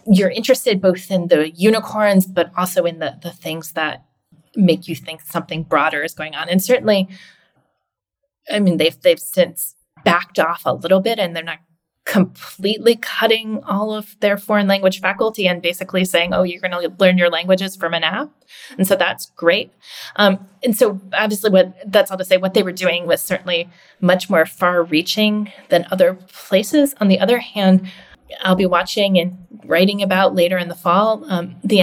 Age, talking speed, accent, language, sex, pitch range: 20-39, 185 wpm, American, English, female, 175-205 Hz